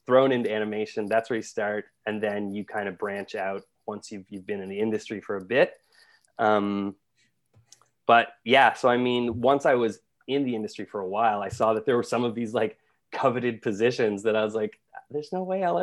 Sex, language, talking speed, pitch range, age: male, English, 215 wpm, 105-125 Hz, 20-39